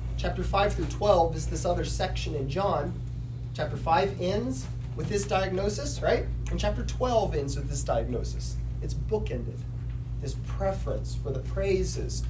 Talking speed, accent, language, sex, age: 150 wpm, American, English, male, 30-49